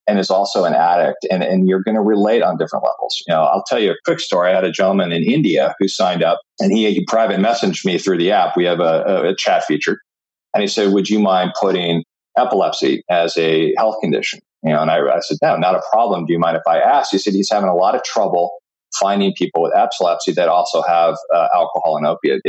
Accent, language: American, English